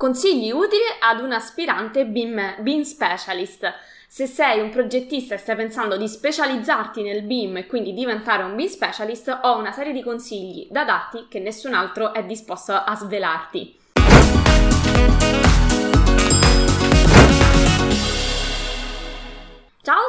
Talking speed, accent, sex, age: 120 wpm, native, female, 20-39